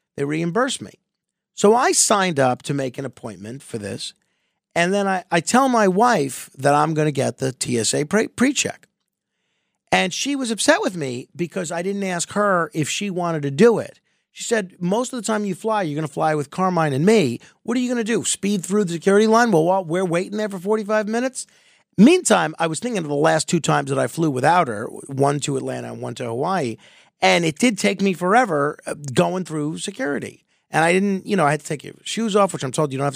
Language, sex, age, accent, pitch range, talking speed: English, male, 50-69, American, 130-190 Hz, 230 wpm